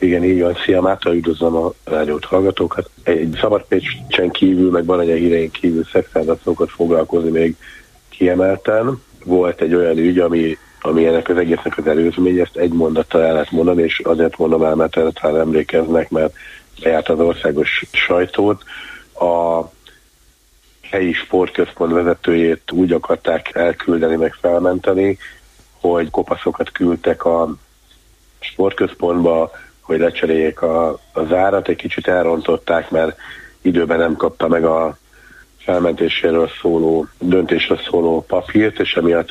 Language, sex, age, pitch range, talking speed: Hungarian, male, 60-79, 80-90 Hz, 125 wpm